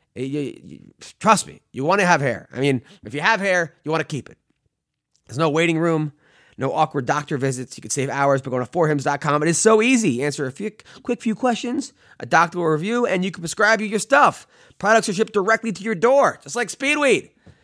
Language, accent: English, American